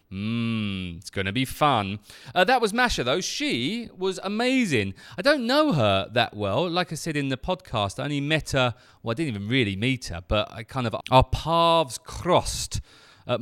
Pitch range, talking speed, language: 110-165 Hz, 195 wpm, English